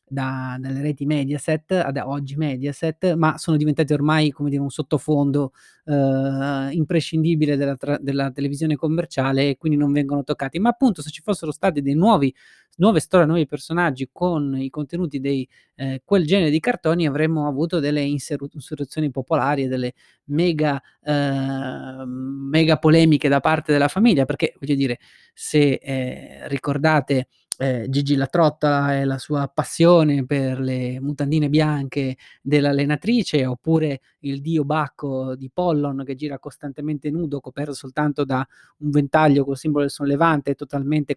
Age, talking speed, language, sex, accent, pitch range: 20-39, 145 wpm, Italian, male, native, 140-160 Hz